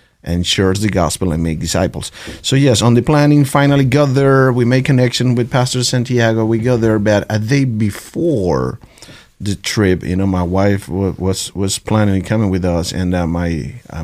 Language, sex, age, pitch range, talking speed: English, male, 30-49, 90-125 Hz, 190 wpm